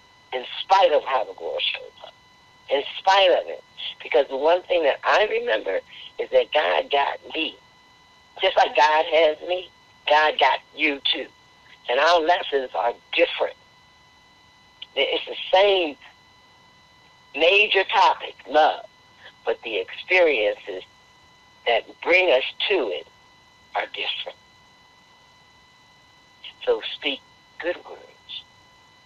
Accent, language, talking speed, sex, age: American, English, 120 wpm, male, 60-79